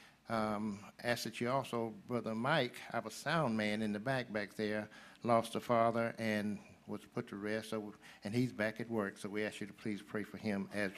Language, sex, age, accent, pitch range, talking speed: English, male, 60-79, American, 105-125 Hz, 210 wpm